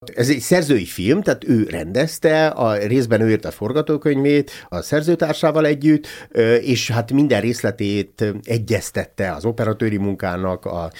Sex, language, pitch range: male, Hungarian, 105-145 Hz